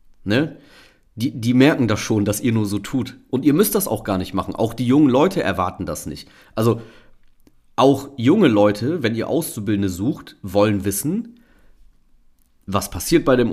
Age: 40-59